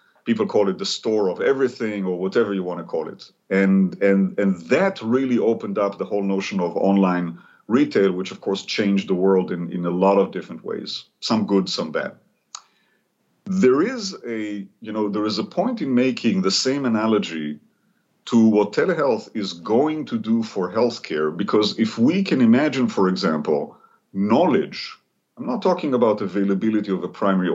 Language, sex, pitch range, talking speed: English, male, 95-135 Hz, 180 wpm